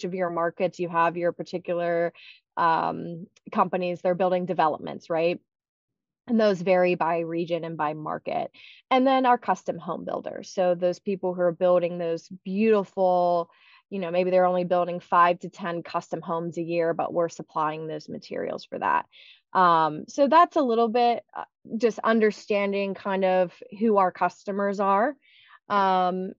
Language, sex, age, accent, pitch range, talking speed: English, female, 20-39, American, 175-225 Hz, 160 wpm